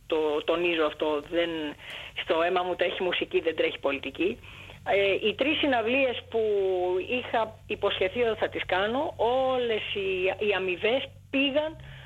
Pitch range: 195-260 Hz